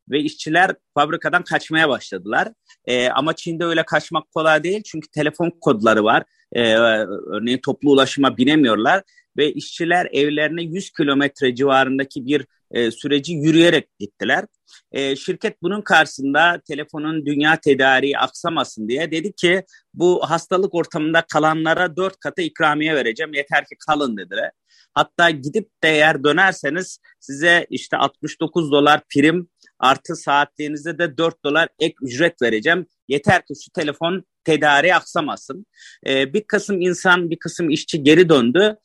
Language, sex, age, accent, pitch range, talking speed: Turkish, male, 40-59, native, 135-170 Hz, 135 wpm